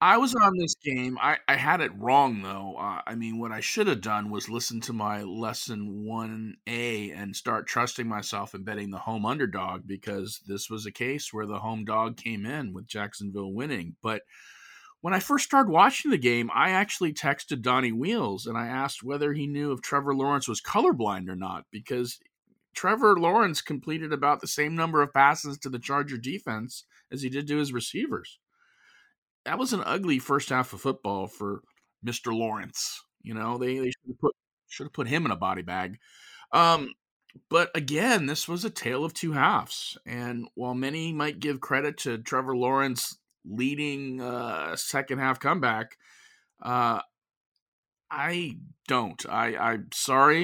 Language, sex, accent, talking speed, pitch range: English, male, American, 180 wpm, 110-140 Hz